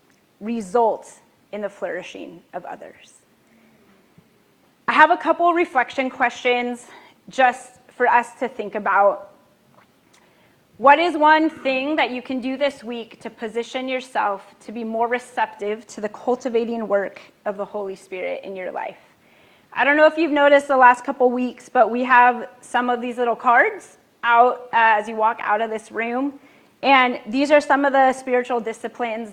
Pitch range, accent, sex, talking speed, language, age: 215-260 Hz, American, female, 165 wpm, English, 30-49